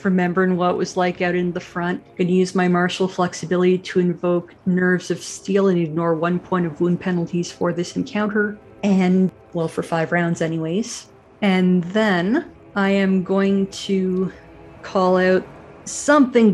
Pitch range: 180-205 Hz